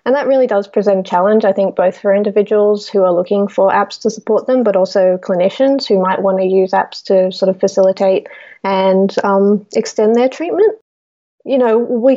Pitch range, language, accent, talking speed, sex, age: 190-215 Hz, English, Australian, 200 wpm, female, 30-49